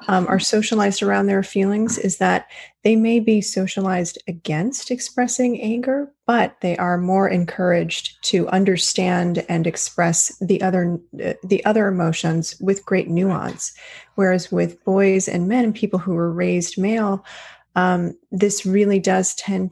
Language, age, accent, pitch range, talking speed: English, 30-49, American, 165-195 Hz, 145 wpm